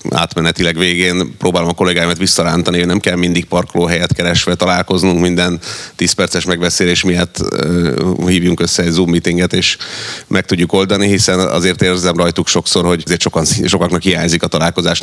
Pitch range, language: 90-95 Hz, Hungarian